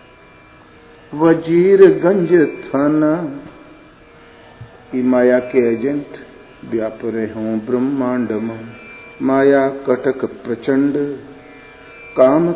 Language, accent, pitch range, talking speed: Hindi, native, 125-175 Hz, 70 wpm